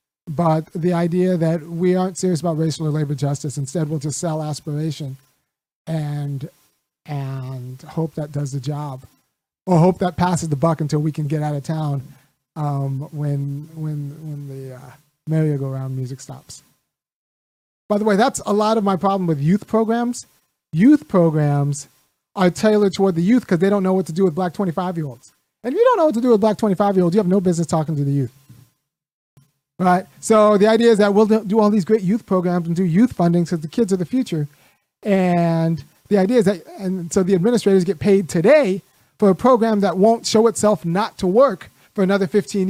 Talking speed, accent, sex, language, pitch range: 210 wpm, American, male, English, 150-200 Hz